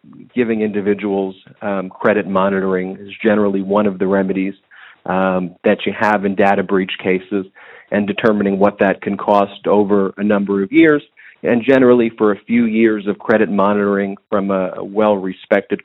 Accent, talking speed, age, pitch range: American, 160 wpm, 40-59, 100-110 Hz